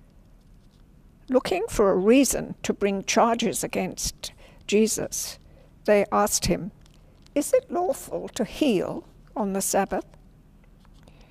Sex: female